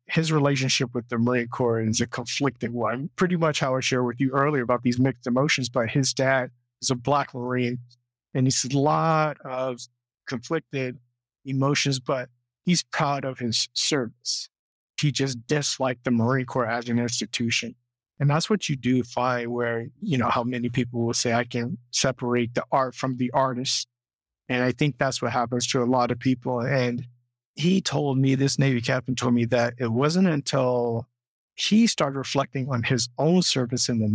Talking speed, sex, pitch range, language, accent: 190 wpm, male, 120-135 Hz, English, American